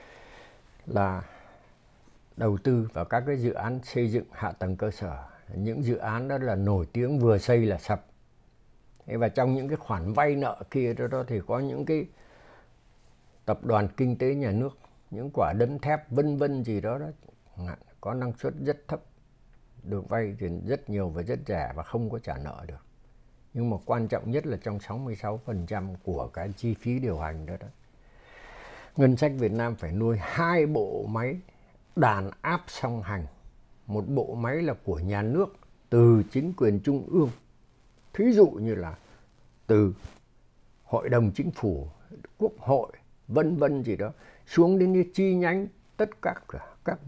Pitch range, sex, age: 105-145 Hz, male, 60-79